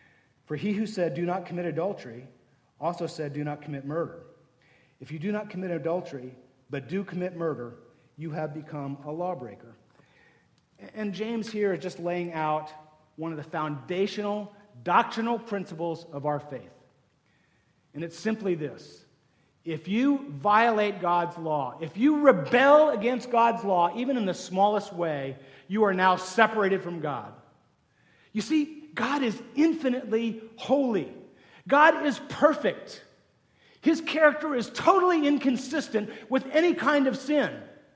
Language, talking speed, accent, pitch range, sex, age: English, 140 wpm, American, 165-240 Hz, male, 50-69